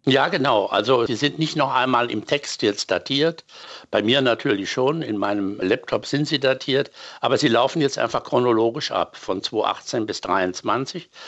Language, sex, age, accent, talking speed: German, male, 60-79, German, 175 wpm